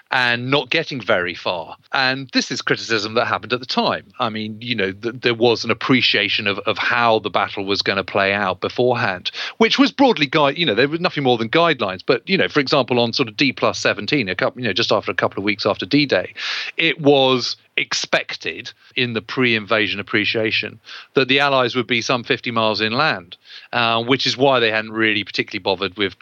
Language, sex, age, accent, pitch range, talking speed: English, male, 40-59, British, 110-140 Hz, 210 wpm